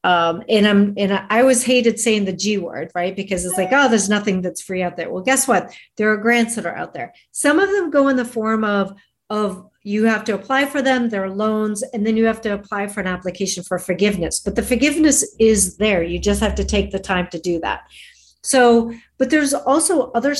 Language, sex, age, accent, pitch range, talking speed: English, female, 50-69, American, 195-235 Hz, 240 wpm